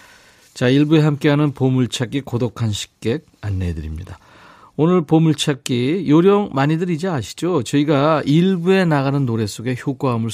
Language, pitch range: Korean, 110-170 Hz